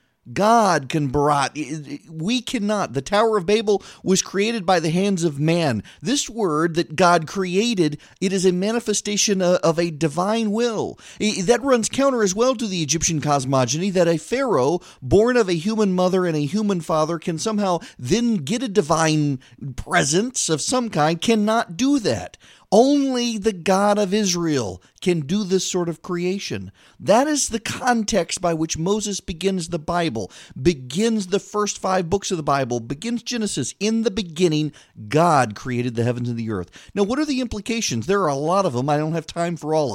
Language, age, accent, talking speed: English, 40-59, American, 180 wpm